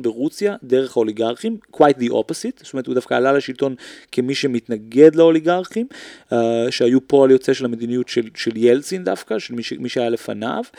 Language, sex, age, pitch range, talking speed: Hebrew, male, 30-49, 120-155 Hz, 170 wpm